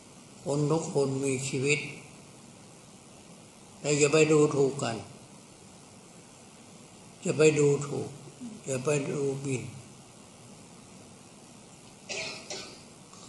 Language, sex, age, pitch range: Thai, male, 60-79, 130-155 Hz